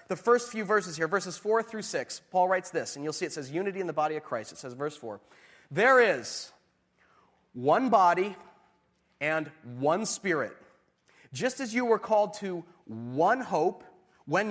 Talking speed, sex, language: 180 wpm, male, English